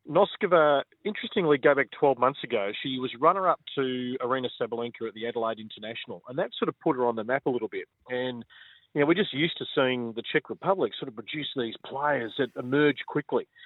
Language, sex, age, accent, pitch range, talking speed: English, male, 40-59, Australian, 120-155 Hz, 210 wpm